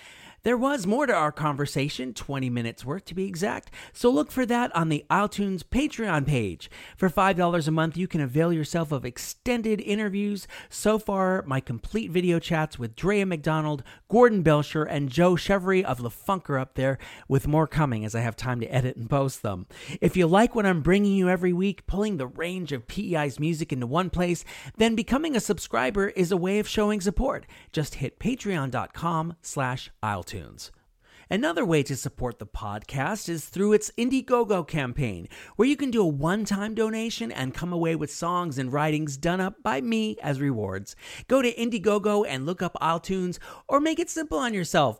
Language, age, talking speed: English, 40-59, 185 wpm